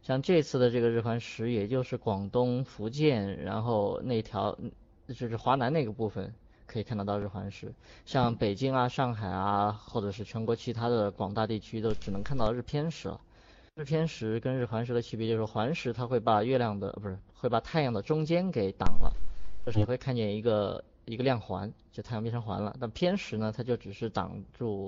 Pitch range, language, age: 105-125 Hz, Chinese, 20-39